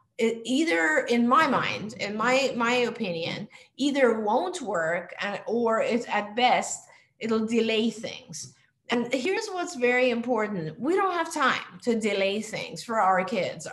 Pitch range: 195-255 Hz